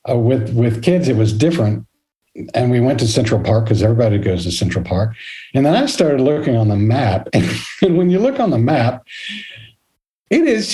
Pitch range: 110-145 Hz